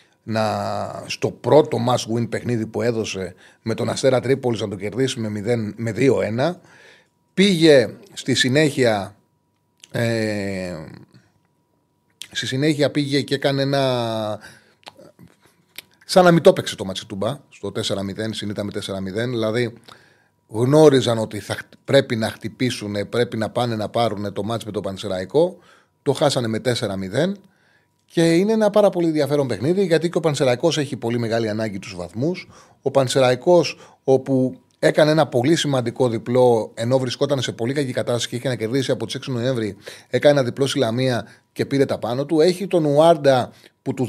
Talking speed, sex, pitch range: 155 wpm, male, 110-145 Hz